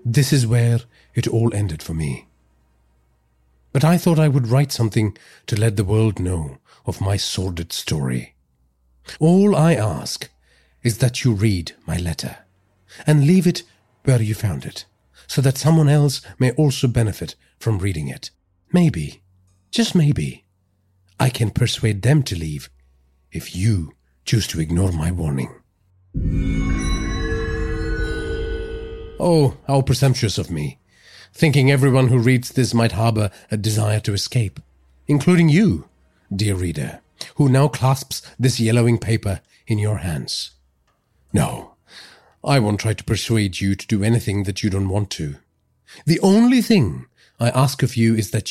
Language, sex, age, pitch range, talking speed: English, male, 50-69, 85-130 Hz, 145 wpm